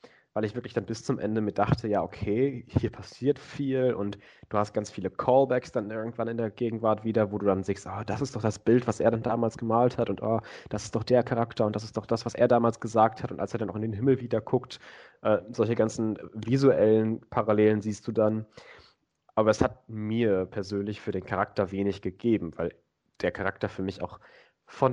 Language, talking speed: German, 220 wpm